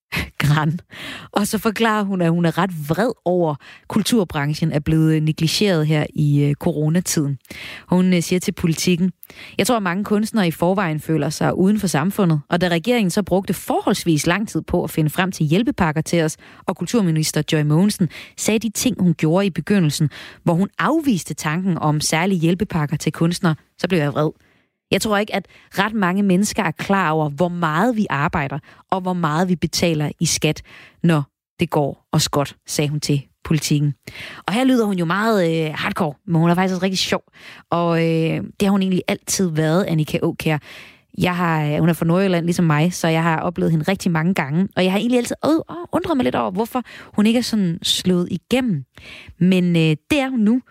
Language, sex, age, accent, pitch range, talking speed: Danish, female, 30-49, native, 155-195 Hz, 195 wpm